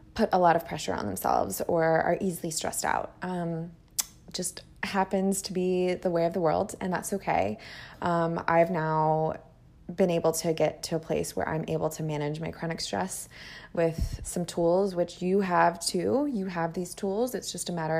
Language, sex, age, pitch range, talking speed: English, female, 20-39, 165-185 Hz, 195 wpm